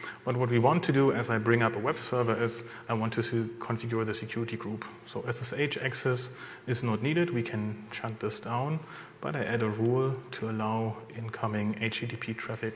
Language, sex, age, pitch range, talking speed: English, male, 30-49, 110-130 Hz, 200 wpm